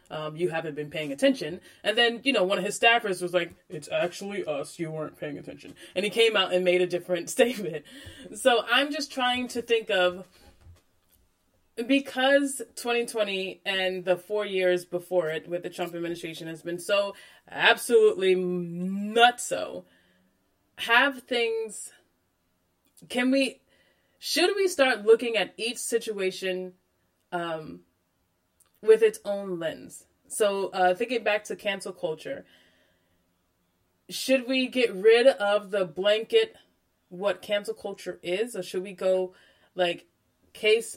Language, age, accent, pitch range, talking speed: English, 20-39, American, 160-215 Hz, 140 wpm